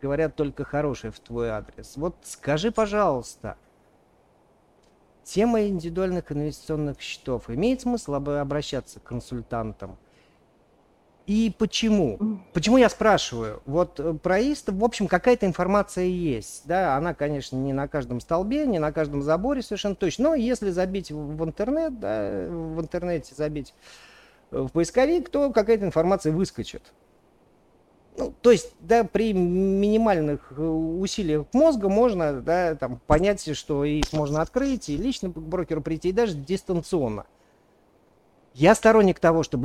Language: Russian